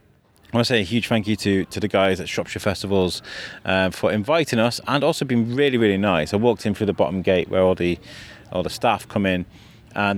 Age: 30-49